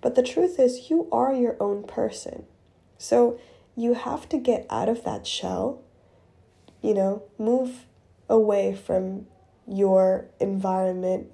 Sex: female